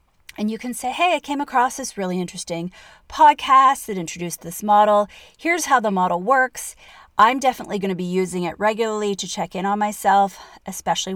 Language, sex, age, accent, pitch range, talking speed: English, female, 30-49, American, 185-250 Hz, 190 wpm